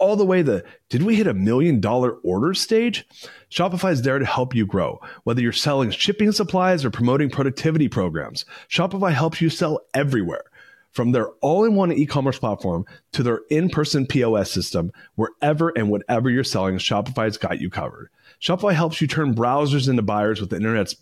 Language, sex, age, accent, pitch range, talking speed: English, male, 30-49, American, 105-150 Hz, 185 wpm